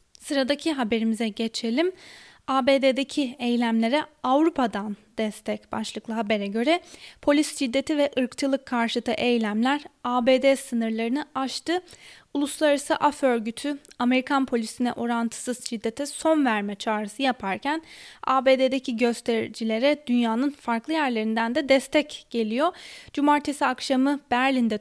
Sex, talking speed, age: female, 100 wpm, 10-29